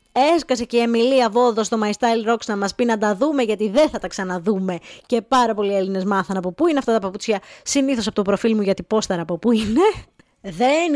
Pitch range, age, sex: 210-295 Hz, 20-39, female